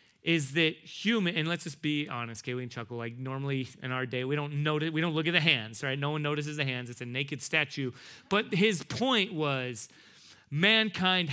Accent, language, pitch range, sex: American, English, 135-170 Hz, male